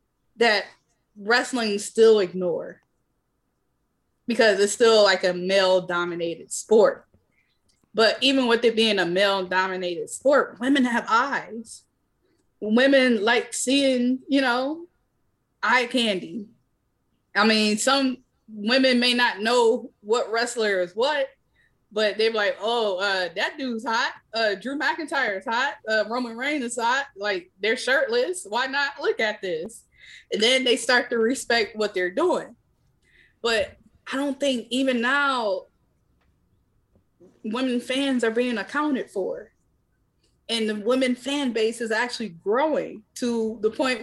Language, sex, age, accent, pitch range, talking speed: English, female, 20-39, American, 190-255 Hz, 135 wpm